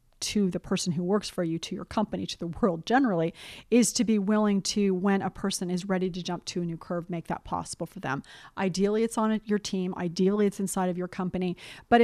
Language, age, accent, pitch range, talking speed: English, 30-49, American, 180-230 Hz, 235 wpm